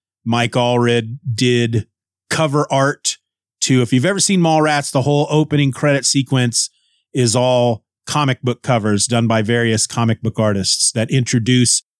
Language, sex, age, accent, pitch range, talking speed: English, male, 30-49, American, 110-130 Hz, 145 wpm